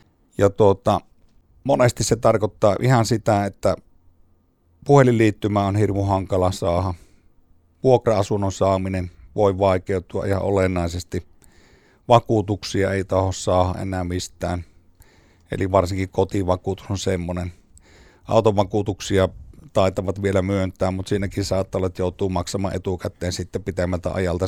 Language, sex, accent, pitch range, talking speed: Finnish, male, native, 90-105 Hz, 110 wpm